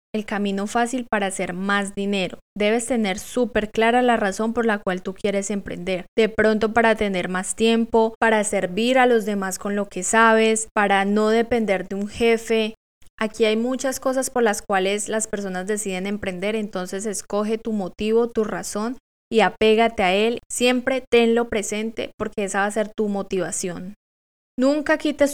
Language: Spanish